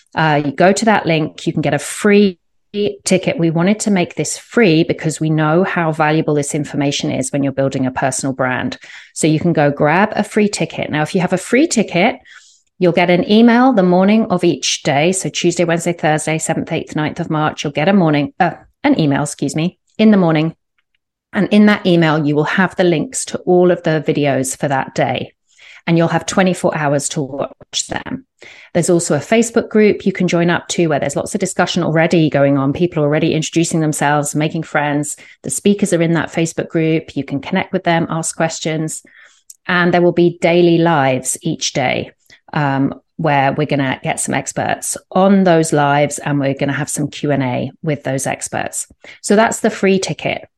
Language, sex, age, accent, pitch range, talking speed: English, female, 30-49, British, 145-180 Hz, 210 wpm